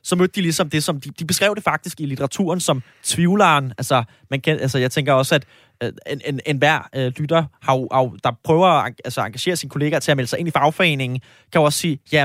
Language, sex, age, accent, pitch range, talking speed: Danish, male, 20-39, native, 135-175 Hz, 250 wpm